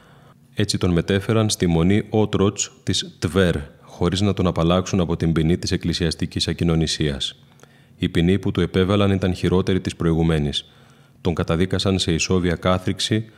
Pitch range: 85-95 Hz